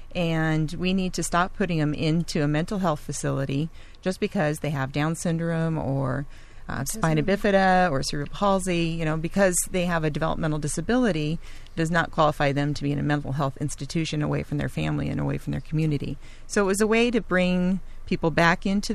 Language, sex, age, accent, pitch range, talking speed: English, female, 40-59, American, 150-180 Hz, 200 wpm